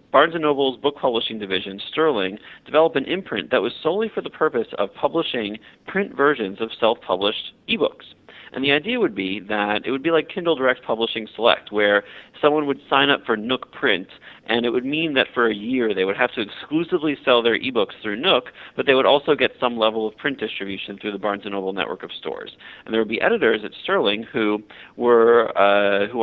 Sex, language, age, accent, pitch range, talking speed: male, English, 40-59, American, 105-130 Hz, 210 wpm